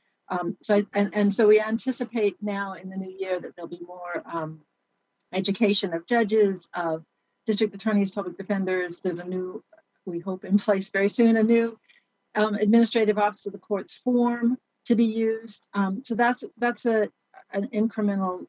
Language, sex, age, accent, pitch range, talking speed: English, female, 40-59, American, 185-225 Hz, 175 wpm